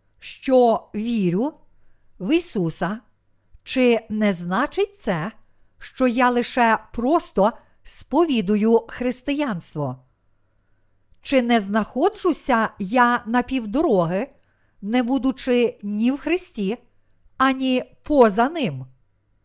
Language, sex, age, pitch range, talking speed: Ukrainian, female, 50-69, 190-265 Hz, 85 wpm